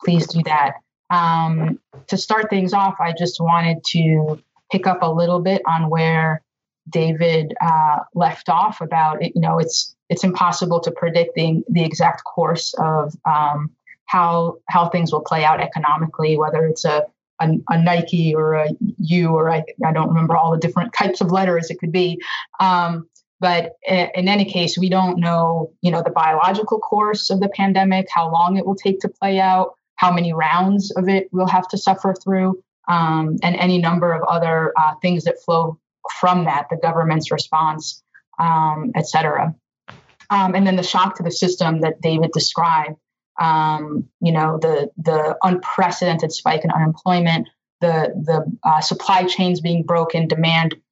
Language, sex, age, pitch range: English, female, 20-39, 160-180 Hz